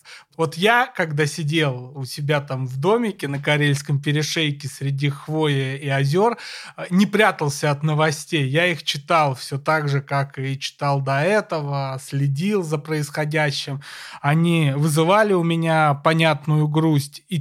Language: Russian